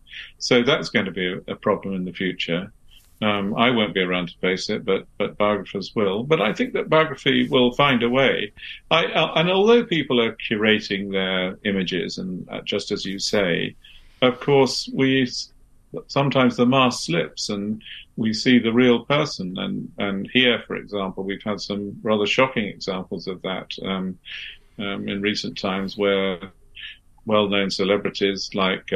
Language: English